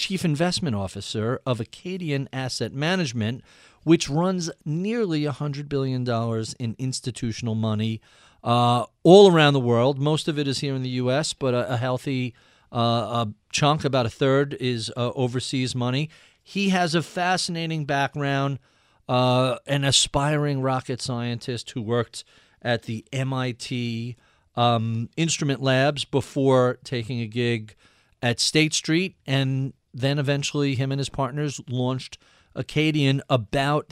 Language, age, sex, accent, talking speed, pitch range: English, 40-59, male, American, 135 wpm, 120-150 Hz